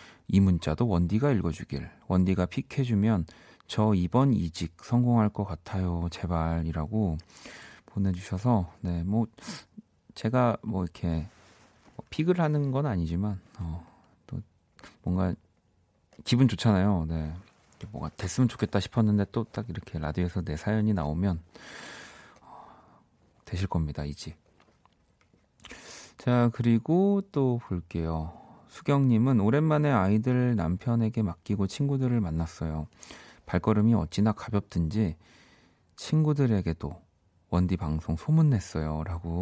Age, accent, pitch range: 40-59, native, 85-115 Hz